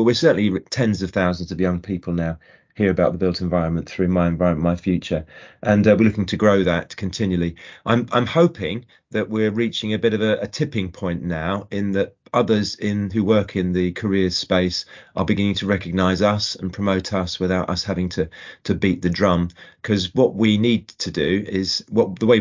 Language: English